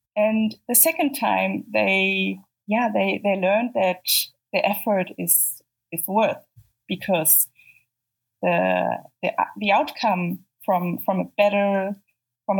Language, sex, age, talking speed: English, female, 20-39, 120 wpm